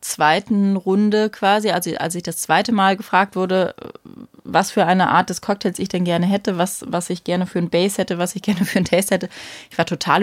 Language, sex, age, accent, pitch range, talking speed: German, female, 20-39, German, 175-210 Hz, 230 wpm